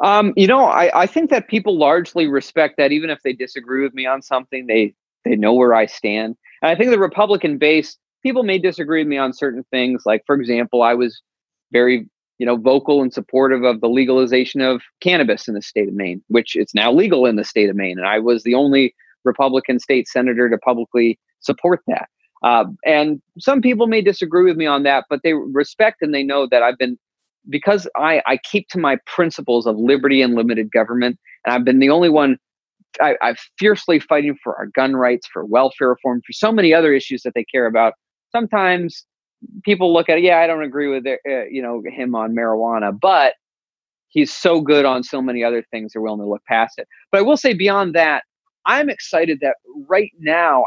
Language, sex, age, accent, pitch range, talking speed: English, male, 30-49, American, 125-175 Hz, 215 wpm